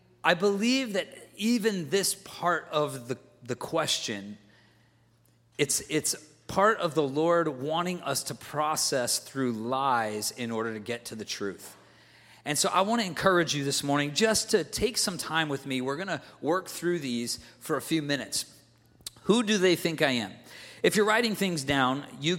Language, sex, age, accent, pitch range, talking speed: English, male, 40-59, American, 125-175 Hz, 180 wpm